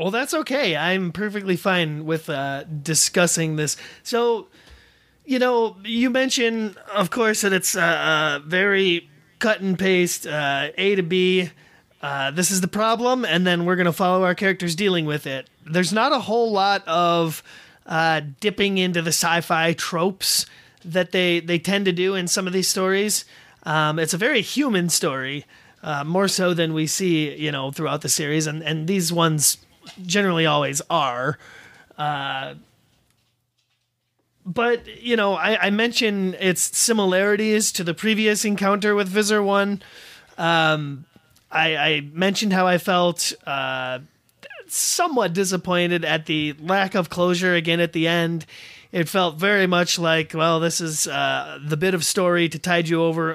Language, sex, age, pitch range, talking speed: English, male, 30-49, 155-195 Hz, 160 wpm